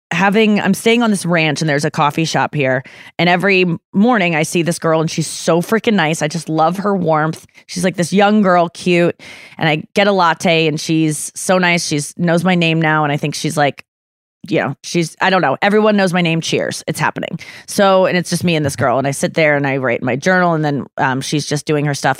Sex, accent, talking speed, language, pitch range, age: female, American, 250 wpm, English, 160-215 Hz, 20-39